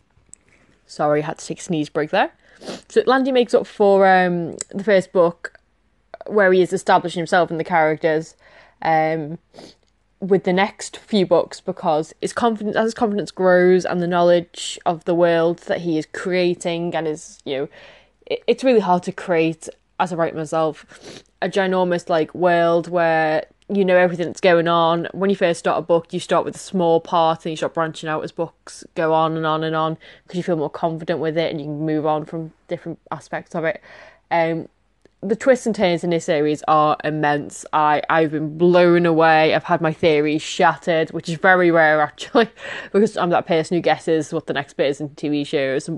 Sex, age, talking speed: female, 20-39, 200 wpm